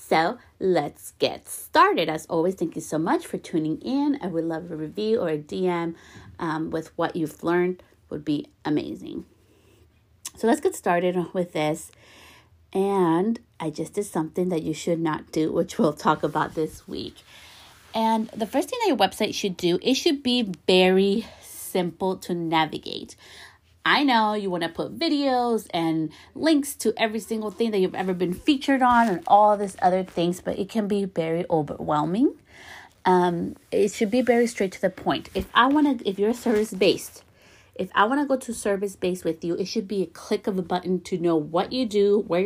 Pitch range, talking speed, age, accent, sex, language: 165-215 Hz, 195 wpm, 30-49, American, female, English